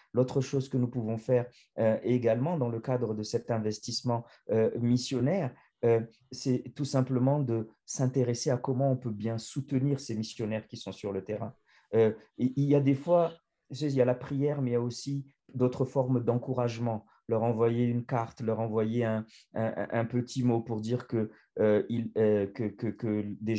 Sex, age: male, 40-59